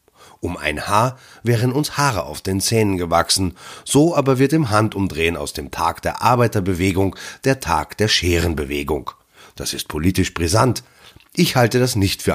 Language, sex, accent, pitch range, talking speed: German, male, German, 80-115 Hz, 160 wpm